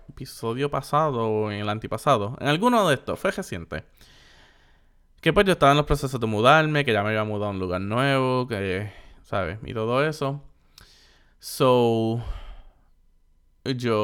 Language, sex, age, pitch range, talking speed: Spanish, male, 20-39, 105-130 Hz, 160 wpm